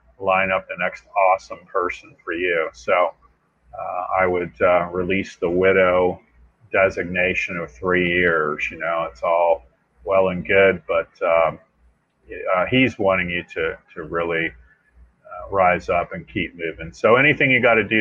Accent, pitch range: American, 90-115 Hz